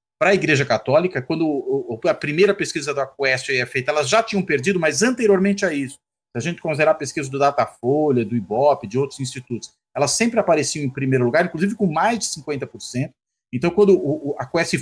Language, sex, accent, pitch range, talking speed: Portuguese, male, Brazilian, 125-185 Hz, 200 wpm